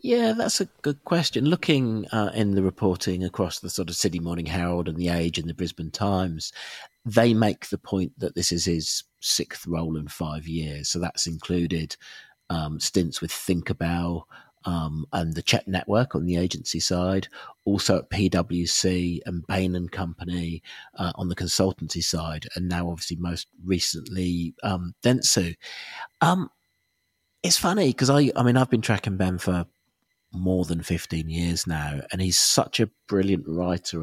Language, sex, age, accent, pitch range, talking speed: English, male, 40-59, British, 85-95 Hz, 170 wpm